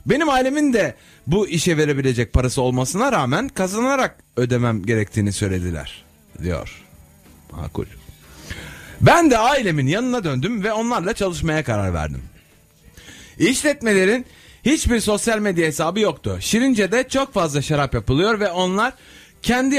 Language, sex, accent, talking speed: Turkish, male, native, 120 wpm